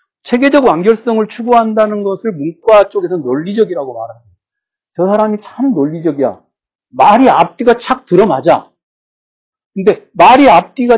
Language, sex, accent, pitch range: Korean, male, native, 180-245 Hz